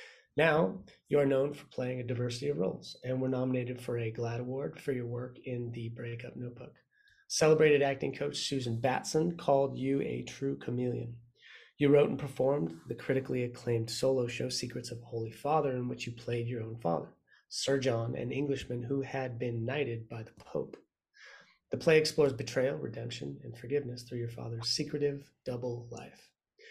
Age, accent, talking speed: 30-49, American, 180 wpm